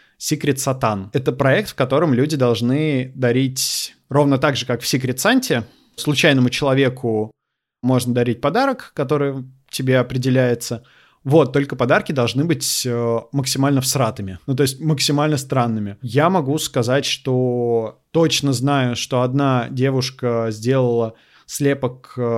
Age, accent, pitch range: 20-39, native, 120-140 Hz